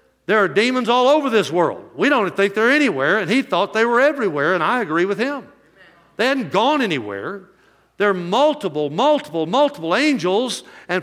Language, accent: English, American